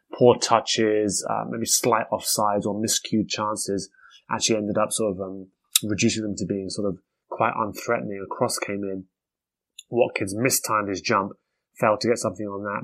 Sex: male